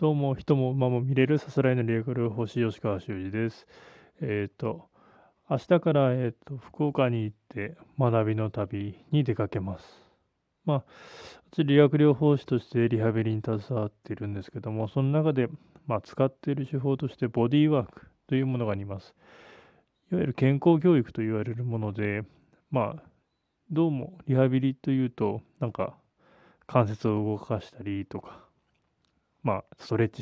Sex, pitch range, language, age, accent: male, 110-145 Hz, Japanese, 20-39, native